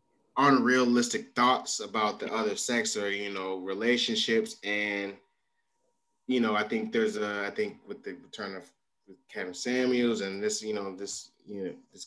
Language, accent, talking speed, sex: English, American, 165 wpm, male